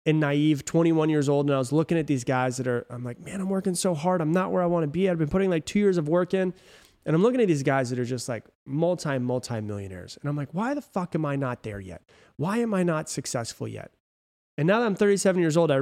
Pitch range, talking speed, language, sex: 125-180 Hz, 285 wpm, English, male